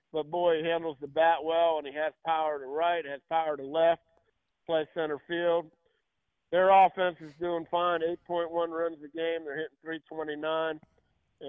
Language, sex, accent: English, male, American